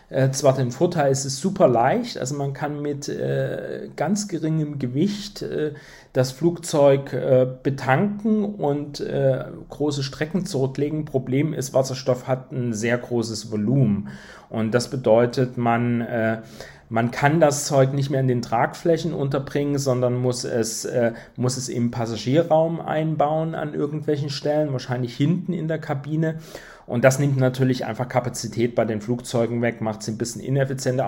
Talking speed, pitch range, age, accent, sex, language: 150 wpm, 120-155 Hz, 40-59, German, male, German